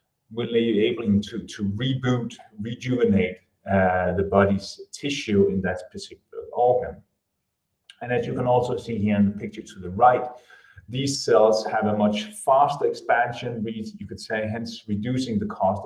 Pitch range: 100-145 Hz